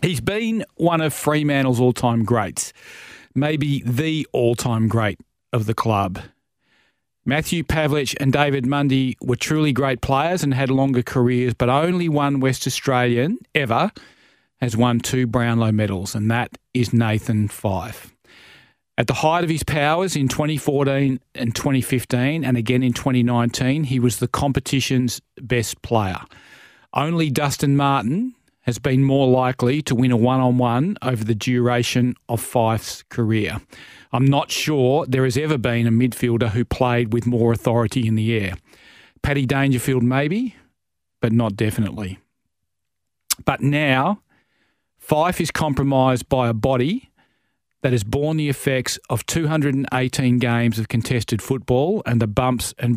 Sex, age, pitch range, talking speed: male, 40-59, 115-140 Hz, 145 wpm